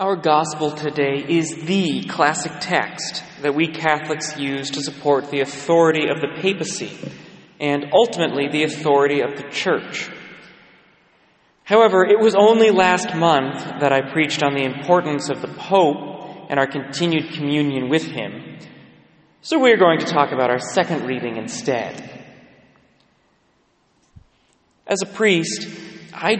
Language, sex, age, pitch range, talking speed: English, male, 30-49, 140-170 Hz, 140 wpm